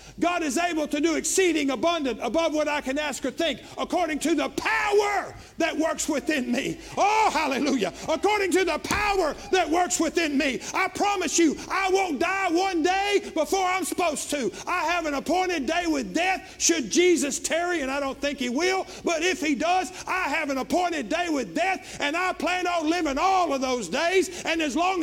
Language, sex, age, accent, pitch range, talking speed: English, male, 50-69, American, 275-375 Hz, 200 wpm